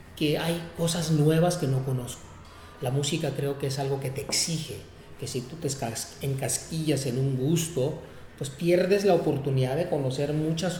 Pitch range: 130-160 Hz